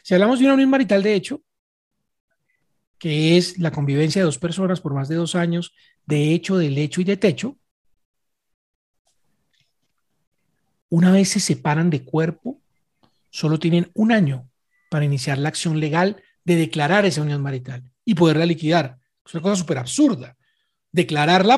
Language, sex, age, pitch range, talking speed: Spanish, male, 40-59, 140-185 Hz, 155 wpm